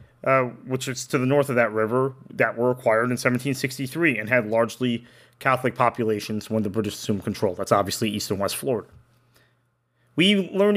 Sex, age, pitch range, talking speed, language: male, 30-49, 120-150 Hz, 180 wpm, English